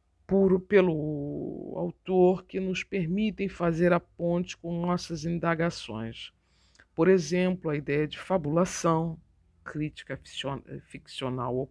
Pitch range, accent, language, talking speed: 150-180 Hz, Brazilian, Portuguese, 110 wpm